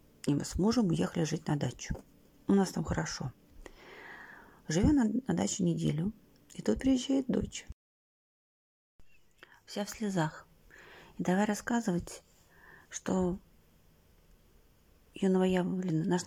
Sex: female